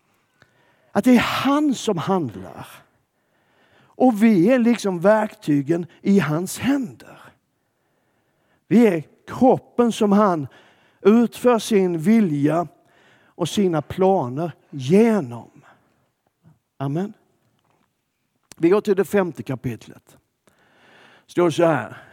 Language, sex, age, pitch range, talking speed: Swedish, male, 60-79, 155-230 Hz, 100 wpm